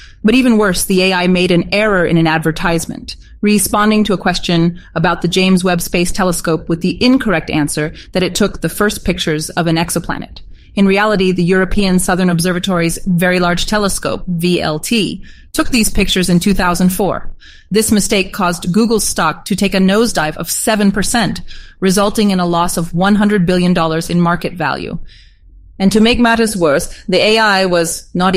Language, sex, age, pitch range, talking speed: English, female, 30-49, 170-205 Hz, 165 wpm